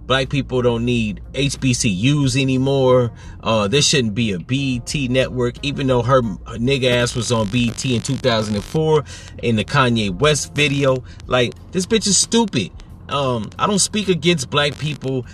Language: English